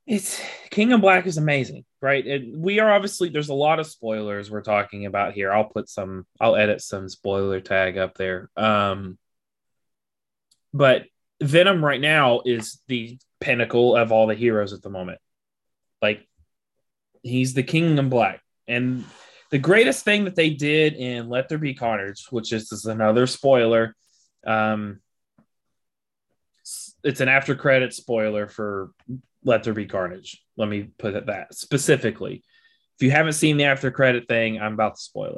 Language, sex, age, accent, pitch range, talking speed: English, male, 20-39, American, 110-145 Hz, 165 wpm